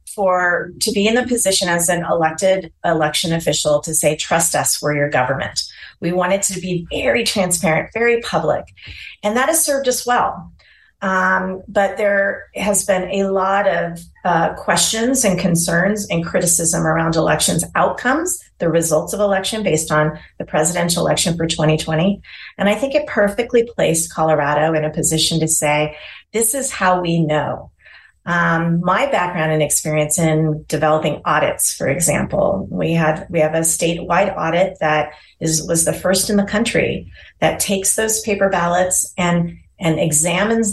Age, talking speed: 30-49, 160 wpm